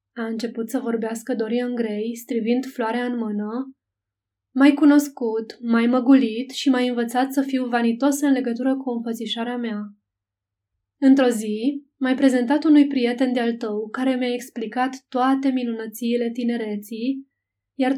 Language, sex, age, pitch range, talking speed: Romanian, female, 20-39, 225-260 Hz, 135 wpm